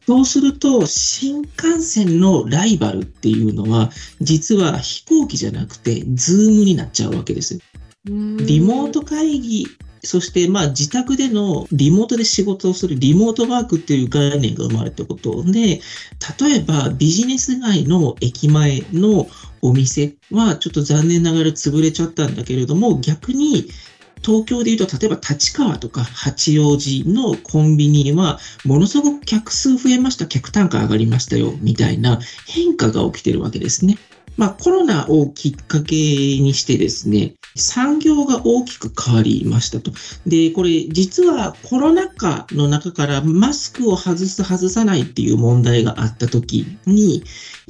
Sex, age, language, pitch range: male, 40-59, Japanese, 145-225 Hz